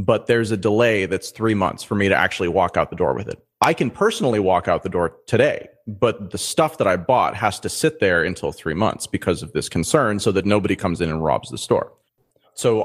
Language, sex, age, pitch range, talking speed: English, male, 30-49, 95-120 Hz, 245 wpm